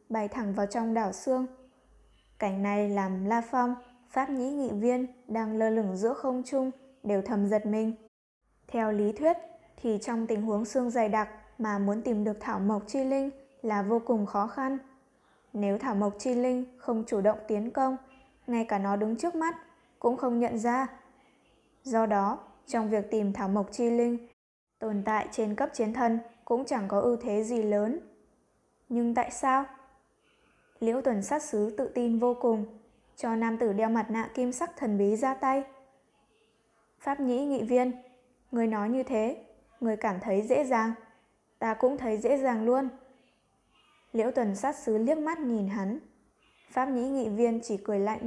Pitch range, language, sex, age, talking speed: 215-260 Hz, Vietnamese, female, 10-29, 185 wpm